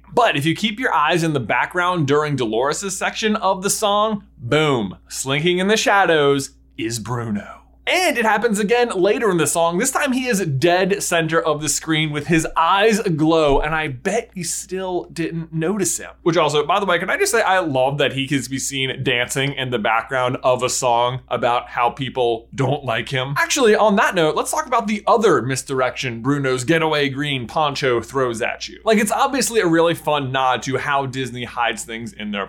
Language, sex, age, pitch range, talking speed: English, male, 20-39, 135-200 Hz, 205 wpm